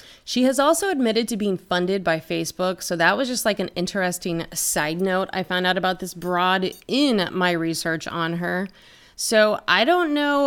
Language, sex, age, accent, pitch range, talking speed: English, female, 30-49, American, 180-240 Hz, 190 wpm